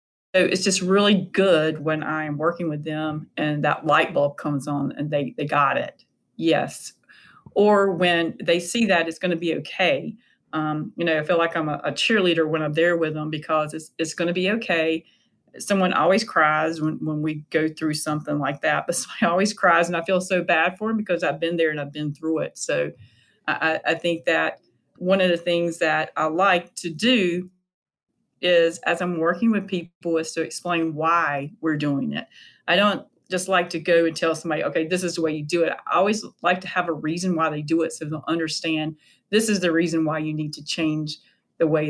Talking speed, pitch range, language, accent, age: 220 wpm, 155-180 Hz, English, American, 40-59